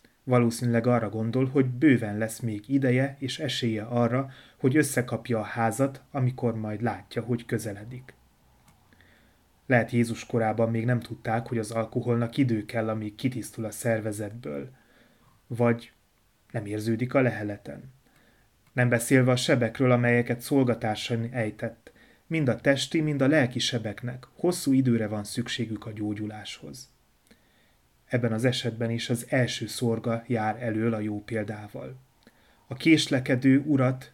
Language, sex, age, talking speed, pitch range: Hungarian, male, 30-49, 130 wpm, 110-130 Hz